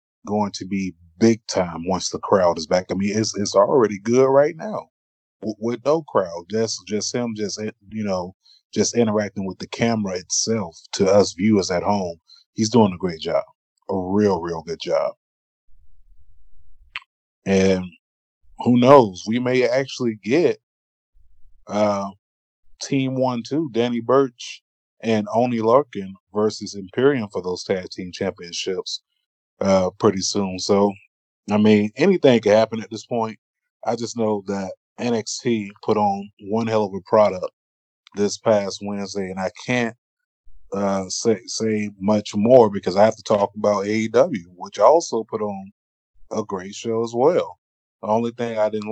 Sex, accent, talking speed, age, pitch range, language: male, American, 160 wpm, 20-39, 95-115 Hz, English